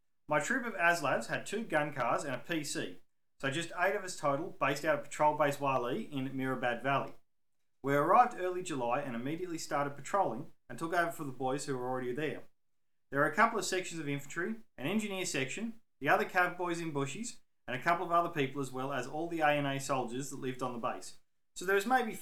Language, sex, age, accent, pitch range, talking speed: English, male, 30-49, Australian, 135-180 Hz, 225 wpm